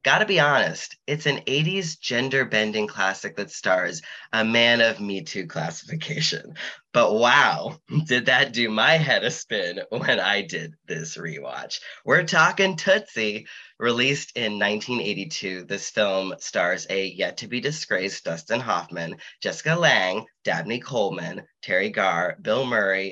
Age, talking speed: 20-39, 130 wpm